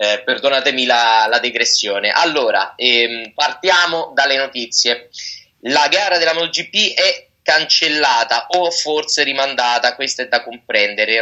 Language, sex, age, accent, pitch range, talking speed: Italian, male, 20-39, native, 125-155 Hz, 125 wpm